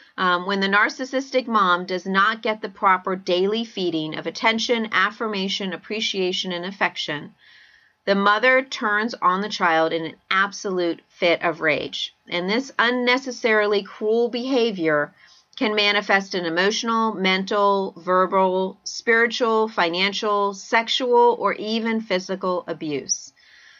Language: English